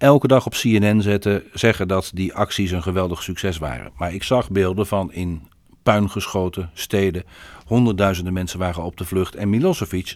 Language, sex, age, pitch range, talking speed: Dutch, male, 50-69, 90-120 Hz, 165 wpm